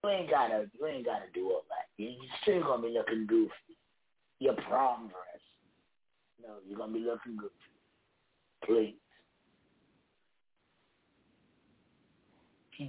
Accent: American